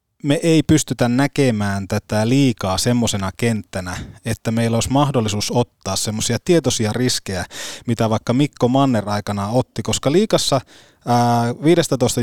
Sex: male